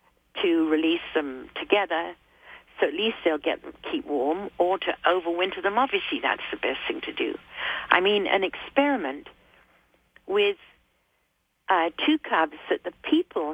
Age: 50-69